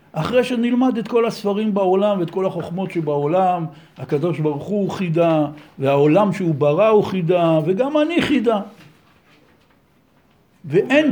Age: 60-79